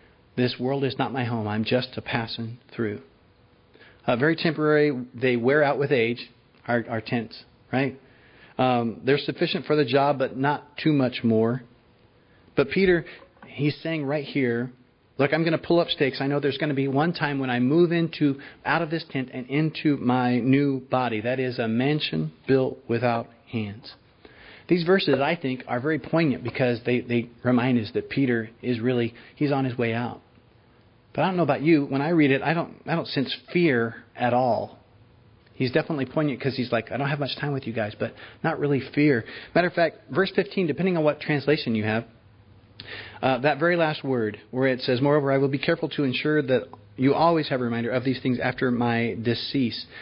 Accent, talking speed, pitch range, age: American, 205 wpm, 120-145 Hz, 40-59